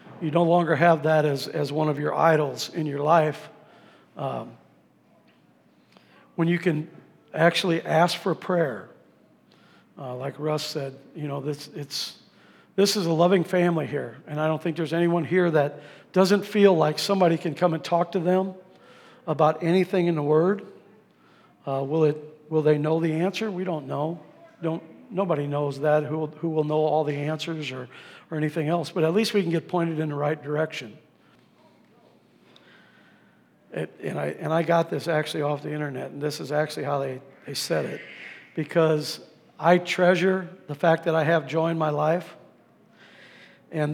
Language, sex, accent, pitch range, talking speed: English, male, American, 150-175 Hz, 180 wpm